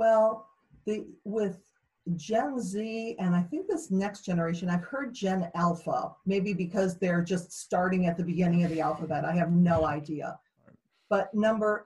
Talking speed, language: 160 wpm, English